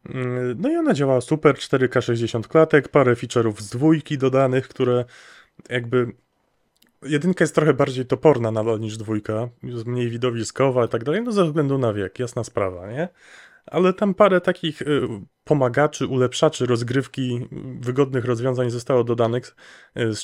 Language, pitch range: Polish, 120-155 Hz